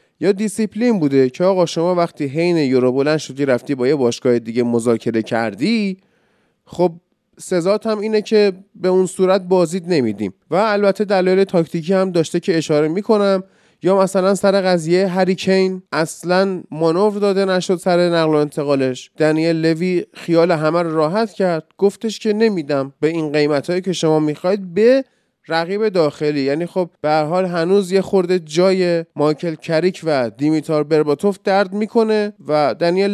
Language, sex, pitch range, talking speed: Persian, male, 155-195 Hz, 150 wpm